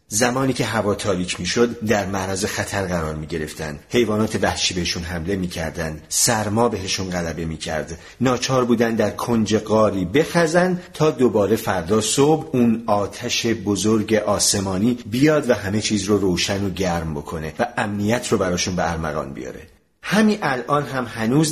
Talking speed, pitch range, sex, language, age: 145 wpm, 95-140 Hz, male, Persian, 40-59